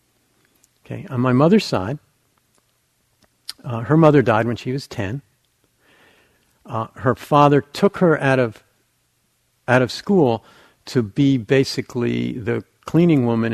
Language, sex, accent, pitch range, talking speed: English, male, American, 115-145 Hz, 130 wpm